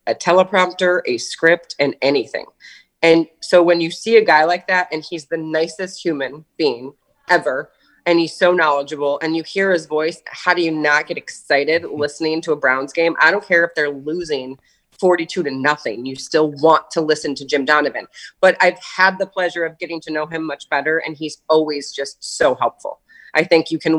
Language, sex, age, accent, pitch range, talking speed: English, female, 30-49, American, 150-180 Hz, 205 wpm